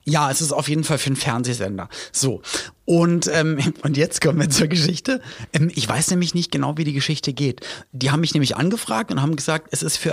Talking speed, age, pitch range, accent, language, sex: 230 wpm, 30-49, 145-180 Hz, German, German, male